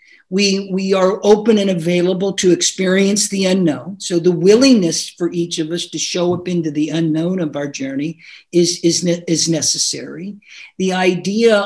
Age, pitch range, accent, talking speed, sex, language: 50-69, 170-205 Hz, American, 170 wpm, male, English